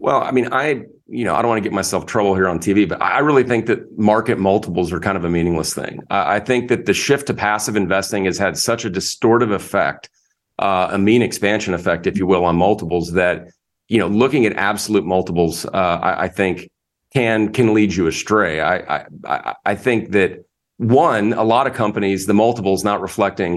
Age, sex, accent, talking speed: 40-59, male, American, 215 wpm